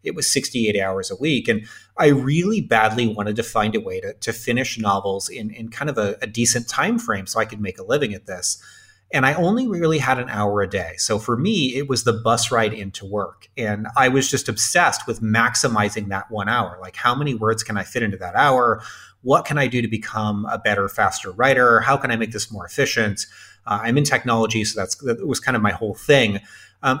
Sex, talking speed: male, 235 wpm